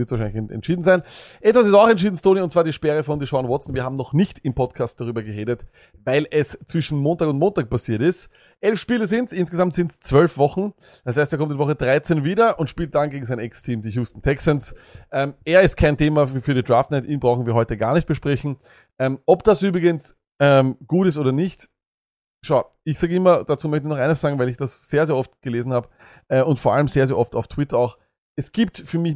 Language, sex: German, male